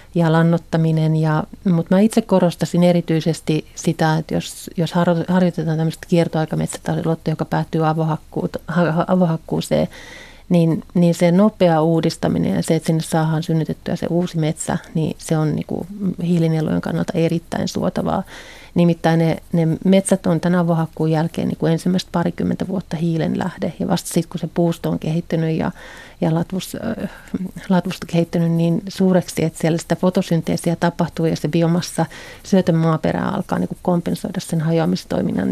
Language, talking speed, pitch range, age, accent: Finnish, 140 wpm, 160-185 Hz, 30-49, native